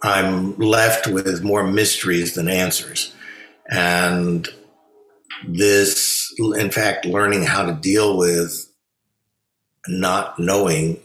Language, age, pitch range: English, 60-79, 85-110 Hz